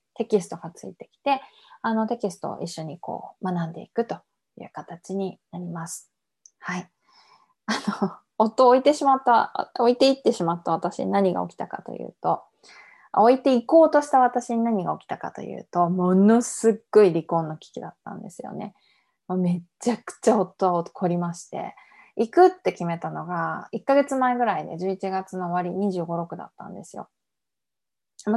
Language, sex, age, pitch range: Japanese, female, 20-39, 170-235 Hz